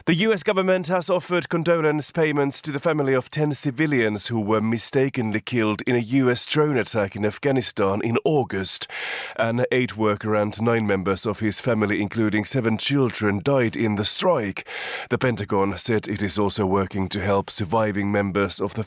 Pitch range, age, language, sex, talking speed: 105-145 Hz, 30-49, English, male, 175 wpm